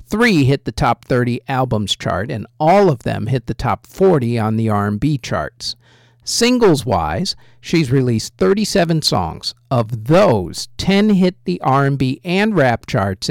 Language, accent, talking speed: English, American, 150 wpm